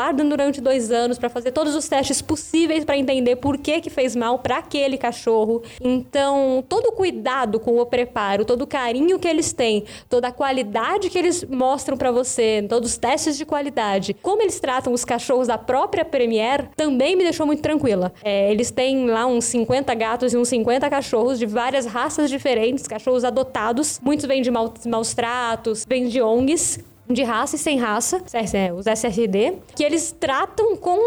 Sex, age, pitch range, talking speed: female, 10-29, 235-300 Hz, 185 wpm